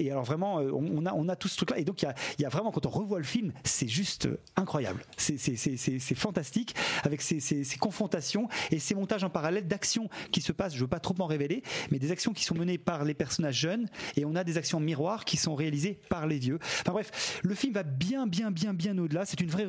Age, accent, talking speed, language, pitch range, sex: 40-59, French, 260 wpm, French, 145-195 Hz, male